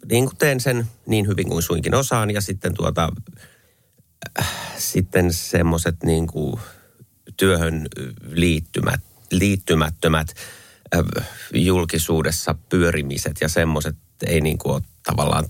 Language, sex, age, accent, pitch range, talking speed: Finnish, male, 30-49, native, 80-100 Hz, 105 wpm